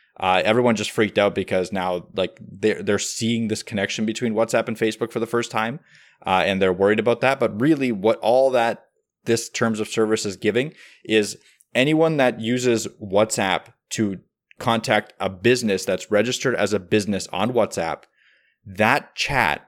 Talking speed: 170 wpm